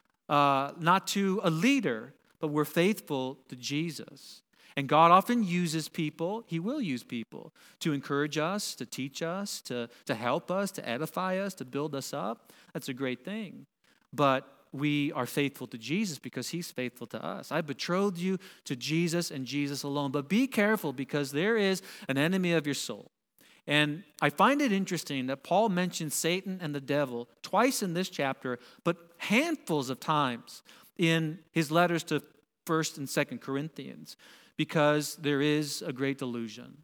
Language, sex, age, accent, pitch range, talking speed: English, male, 40-59, American, 145-180 Hz, 170 wpm